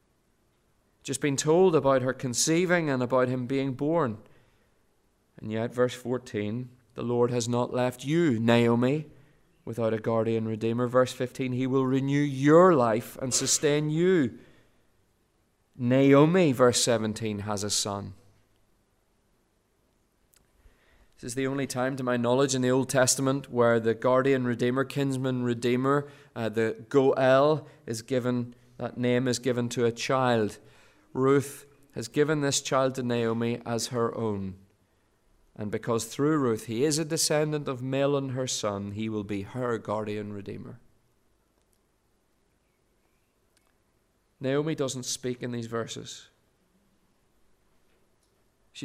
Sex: male